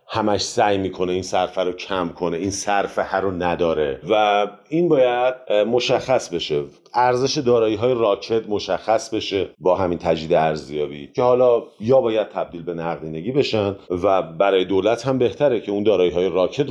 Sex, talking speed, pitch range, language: male, 165 wpm, 85-125 Hz, Persian